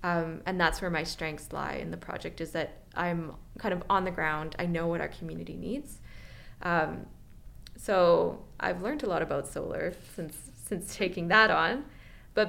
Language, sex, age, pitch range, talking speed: English, female, 20-39, 165-205 Hz, 185 wpm